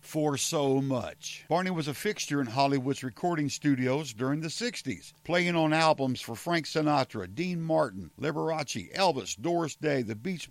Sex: male